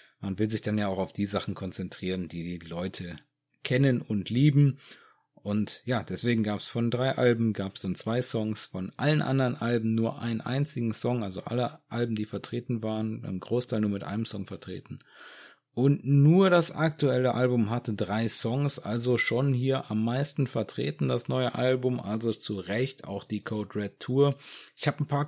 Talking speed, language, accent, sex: 190 wpm, German, German, male